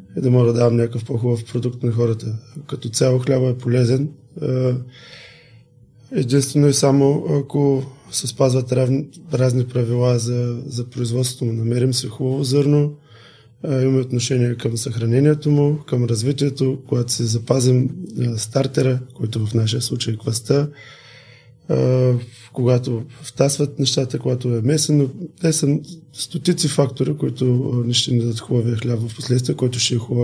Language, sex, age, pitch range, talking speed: Bulgarian, male, 20-39, 120-135 Hz, 140 wpm